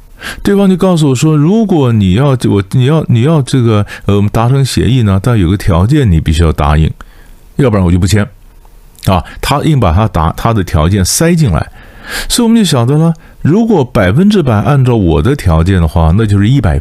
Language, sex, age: Chinese, male, 50-69